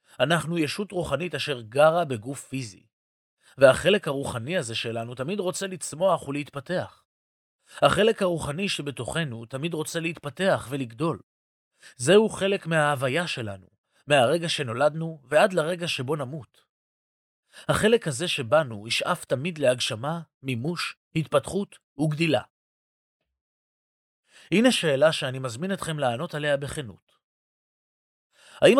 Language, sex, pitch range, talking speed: Hebrew, male, 125-170 Hz, 105 wpm